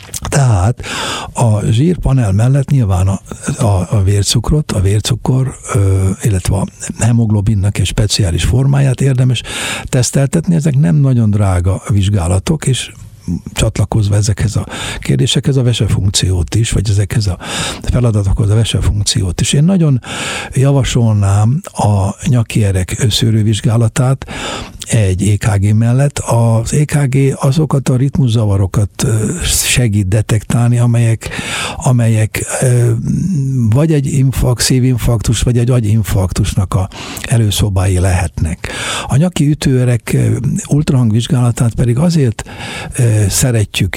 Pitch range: 105-130 Hz